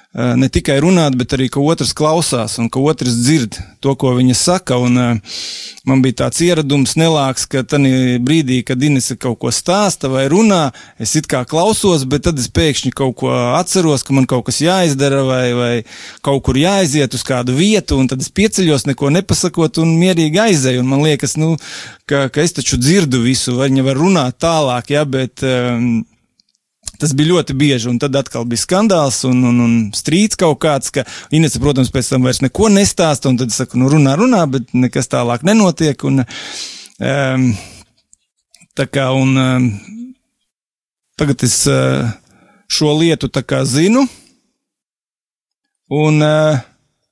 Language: English